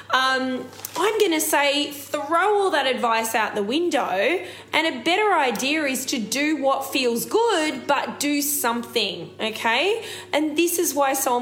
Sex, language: female, English